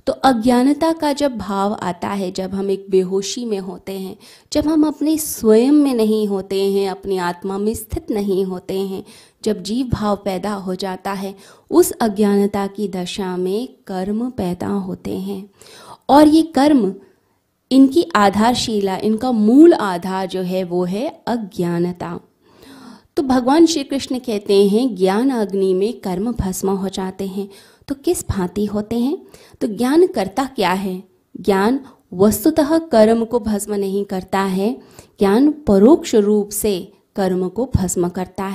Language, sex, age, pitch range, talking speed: Hindi, female, 20-39, 190-250 Hz, 150 wpm